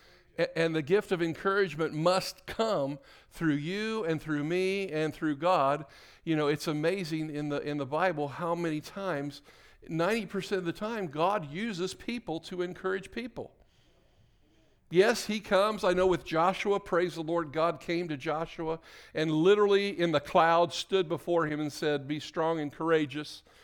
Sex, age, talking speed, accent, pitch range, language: male, 50-69, 165 wpm, American, 135-170 Hz, English